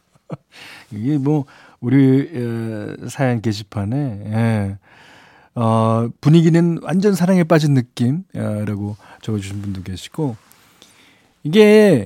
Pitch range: 115-170 Hz